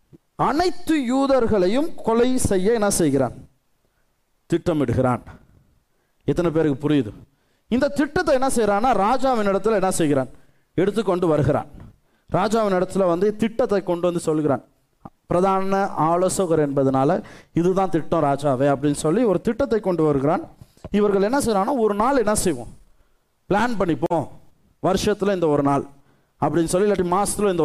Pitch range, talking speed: 155-230 Hz, 120 wpm